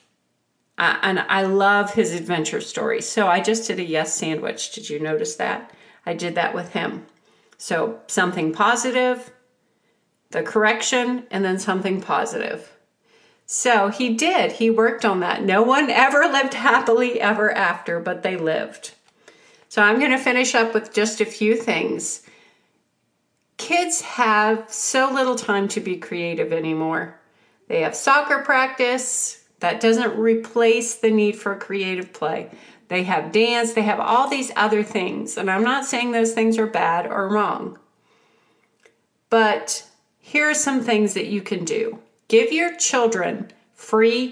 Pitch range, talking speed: 200-245 Hz, 155 wpm